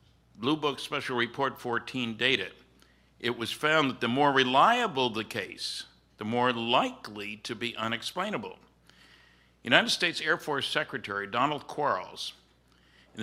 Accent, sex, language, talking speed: American, male, English, 130 wpm